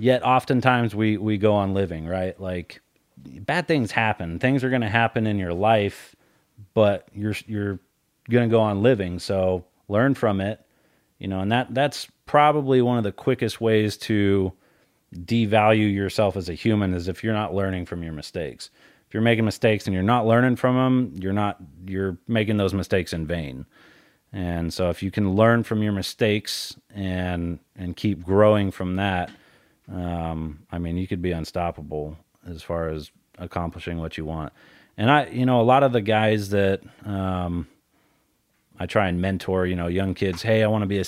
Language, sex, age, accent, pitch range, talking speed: English, male, 30-49, American, 90-115 Hz, 190 wpm